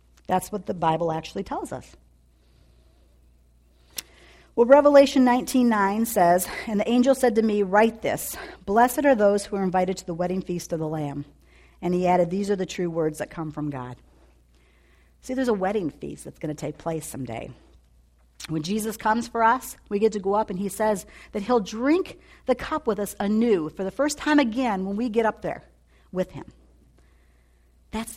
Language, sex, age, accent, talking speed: English, female, 50-69, American, 190 wpm